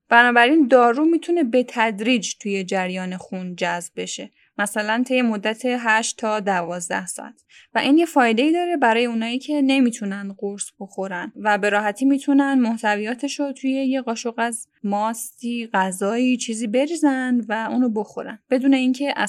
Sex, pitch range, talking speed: female, 215-275 Hz, 145 wpm